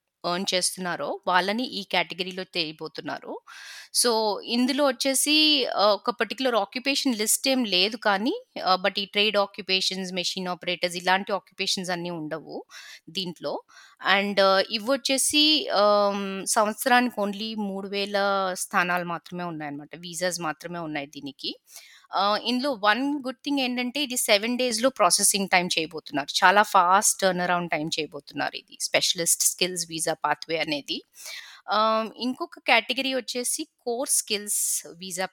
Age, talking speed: 20-39, 120 wpm